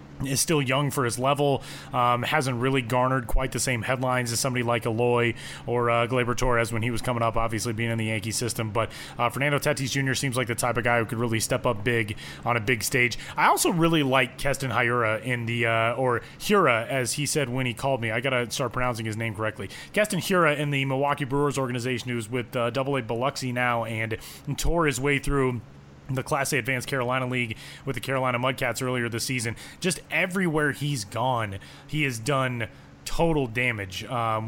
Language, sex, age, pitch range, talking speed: English, male, 30-49, 120-145 Hz, 210 wpm